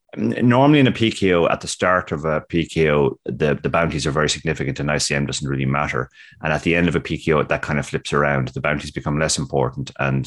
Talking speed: 230 wpm